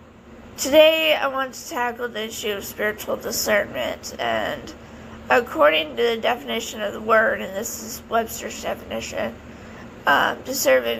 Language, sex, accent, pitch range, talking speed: English, female, American, 215-265 Hz, 135 wpm